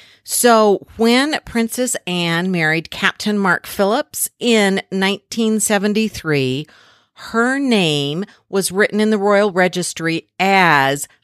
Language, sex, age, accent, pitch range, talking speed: English, female, 50-69, American, 170-220 Hz, 100 wpm